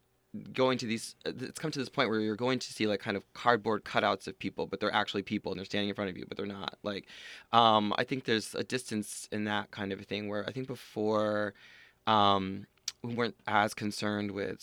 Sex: male